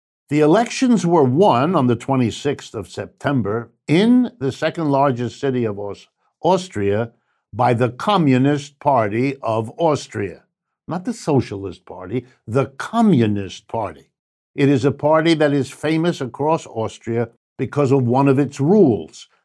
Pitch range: 110-150 Hz